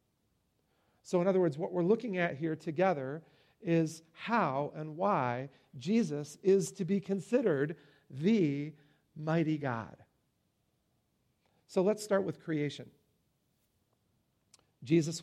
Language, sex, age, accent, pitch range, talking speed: English, male, 50-69, American, 145-195 Hz, 110 wpm